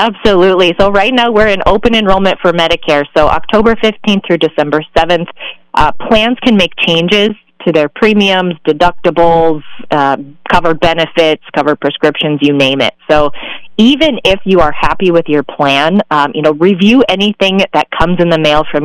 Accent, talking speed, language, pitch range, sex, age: American, 170 wpm, English, 150-200 Hz, female, 30-49